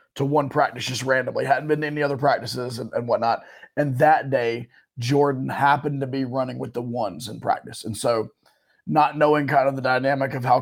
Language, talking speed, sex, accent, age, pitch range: English, 210 wpm, male, American, 30-49, 125-150 Hz